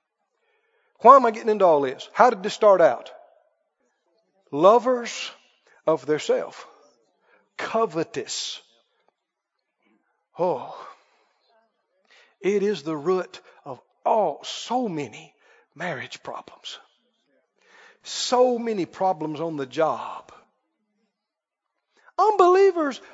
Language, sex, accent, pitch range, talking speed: English, male, American, 225-320 Hz, 90 wpm